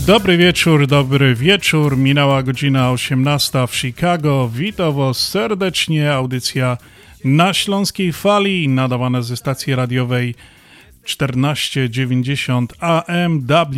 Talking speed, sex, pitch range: 85 wpm, male, 130-160 Hz